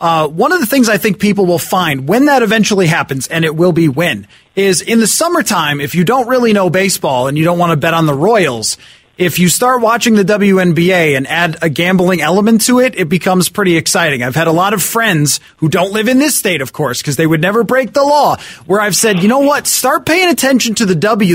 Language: English